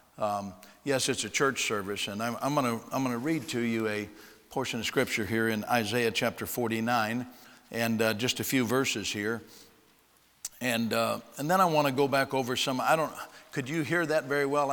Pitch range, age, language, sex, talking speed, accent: 115-140 Hz, 50-69, English, male, 205 wpm, American